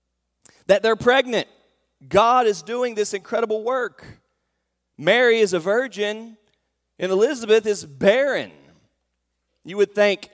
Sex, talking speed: male, 115 wpm